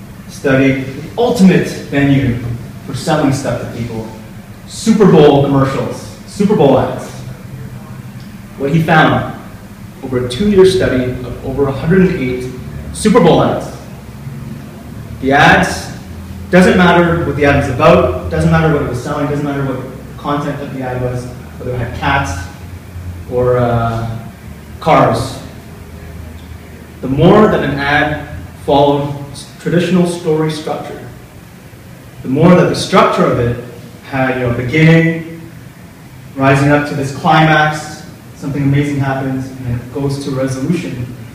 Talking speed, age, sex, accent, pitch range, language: 135 wpm, 30-49, male, American, 120-155 Hz, English